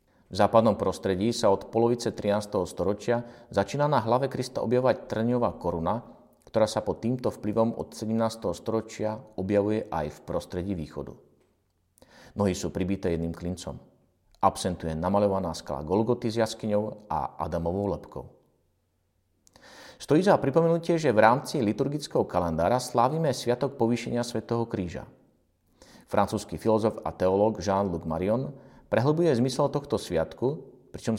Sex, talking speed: male, 125 wpm